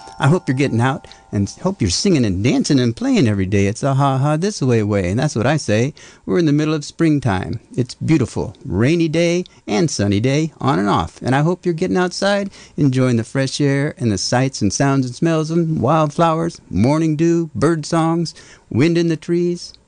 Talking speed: 210 wpm